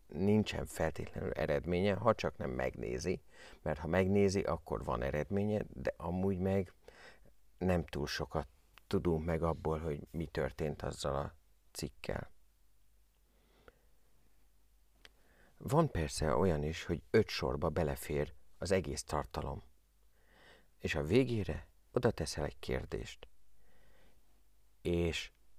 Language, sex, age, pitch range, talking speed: Hungarian, male, 50-69, 75-100 Hz, 110 wpm